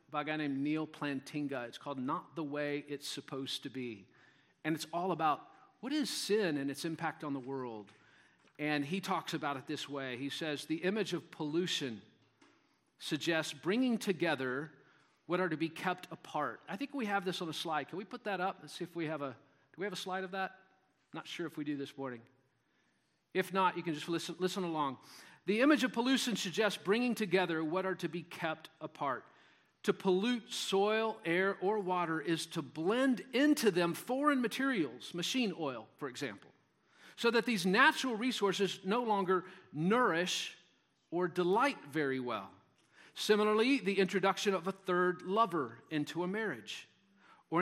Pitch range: 150-195 Hz